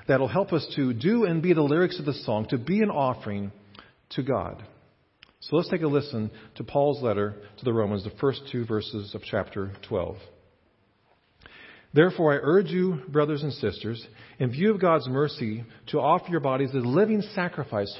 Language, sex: English, male